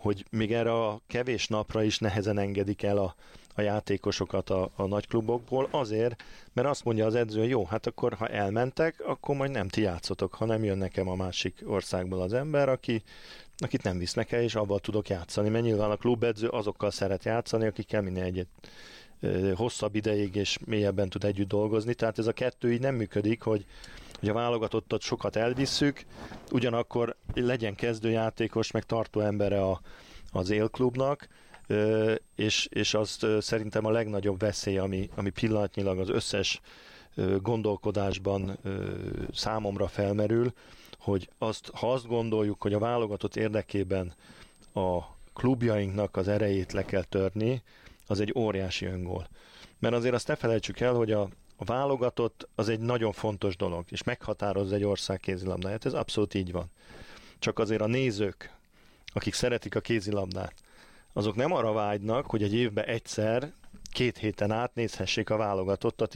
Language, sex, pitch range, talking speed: Hungarian, male, 100-115 Hz, 155 wpm